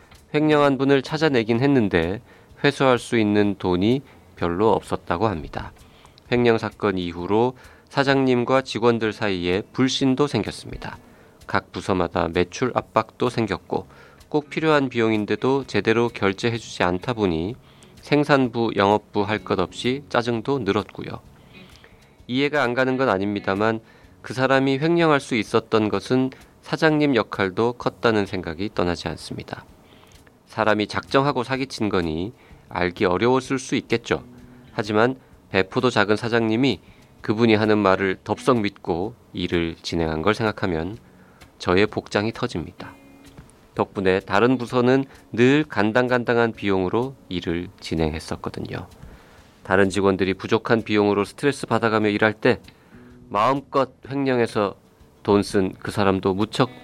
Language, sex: Korean, male